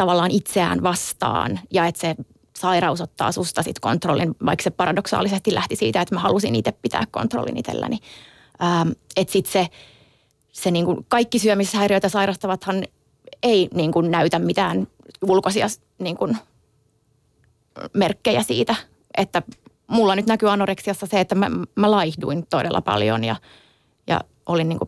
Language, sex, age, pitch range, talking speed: Finnish, female, 20-39, 165-200 Hz, 135 wpm